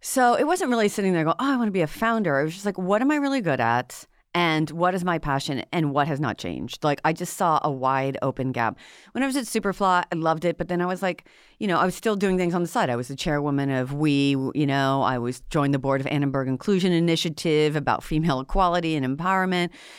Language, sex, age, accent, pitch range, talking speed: English, female, 40-59, American, 135-180 Hz, 260 wpm